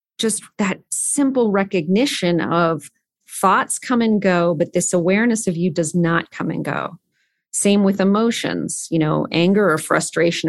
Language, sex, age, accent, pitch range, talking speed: English, female, 30-49, American, 165-200 Hz, 155 wpm